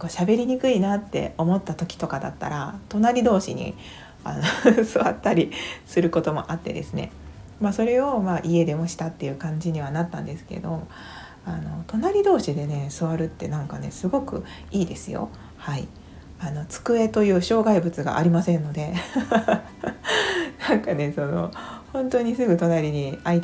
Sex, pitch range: female, 165-225 Hz